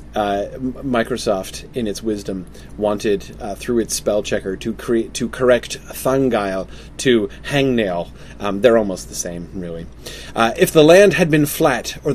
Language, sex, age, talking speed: English, male, 30-49, 160 wpm